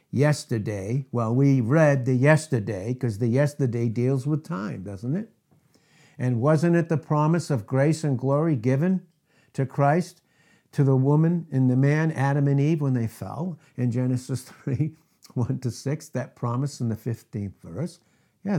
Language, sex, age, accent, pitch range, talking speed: English, male, 60-79, American, 120-155 Hz, 165 wpm